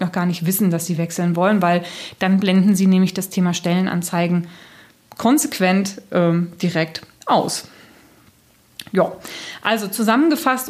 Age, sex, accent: 20-39, female, German